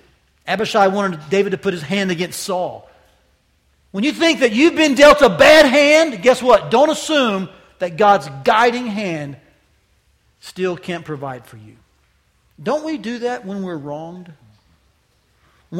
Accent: American